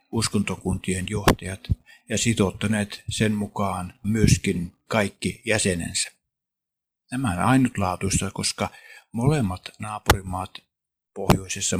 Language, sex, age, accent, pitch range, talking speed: Finnish, male, 50-69, native, 95-115 Hz, 80 wpm